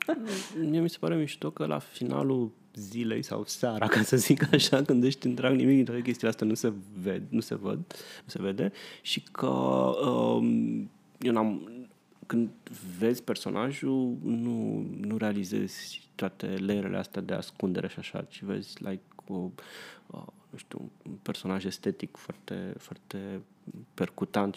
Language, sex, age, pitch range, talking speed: Romanian, male, 30-49, 100-125 Hz, 155 wpm